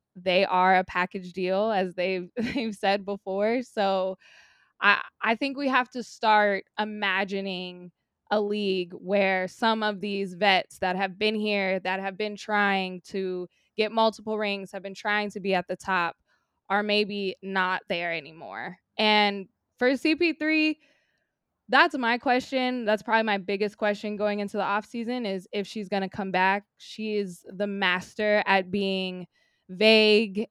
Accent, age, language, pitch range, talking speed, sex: American, 20-39, English, 195-250 Hz, 155 wpm, female